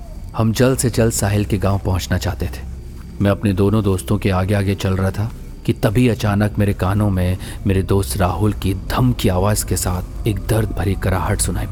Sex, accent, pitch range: male, native, 90-115 Hz